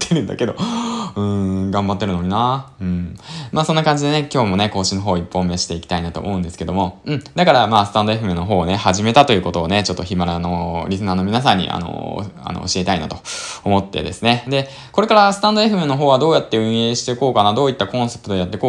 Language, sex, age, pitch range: Japanese, male, 20-39, 95-135 Hz